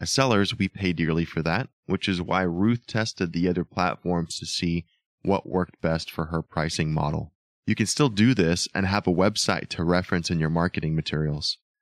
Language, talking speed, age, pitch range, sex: English, 200 wpm, 20-39, 80-105 Hz, male